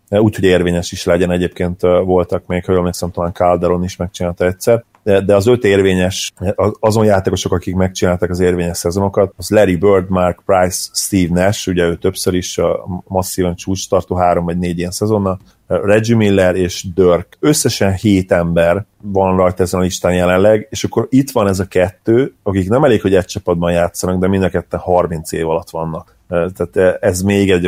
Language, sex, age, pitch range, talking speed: Hungarian, male, 30-49, 85-100 Hz, 180 wpm